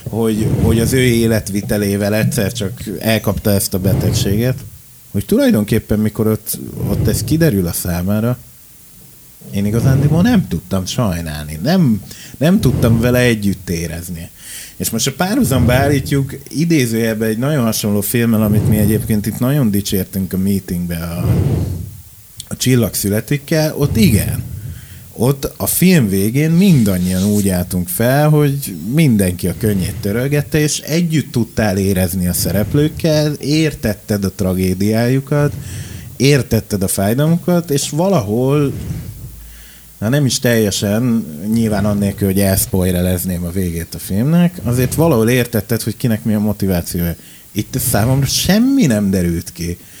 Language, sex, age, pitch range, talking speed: Hungarian, male, 30-49, 100-130 Hz, 130 wpm